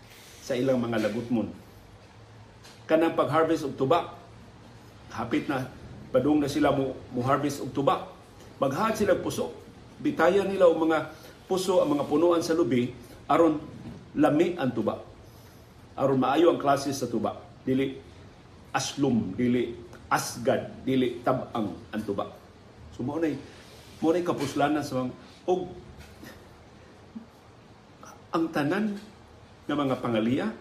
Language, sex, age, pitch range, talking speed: Filipino, male, 50-69, 110-155 Hz, 115 wpm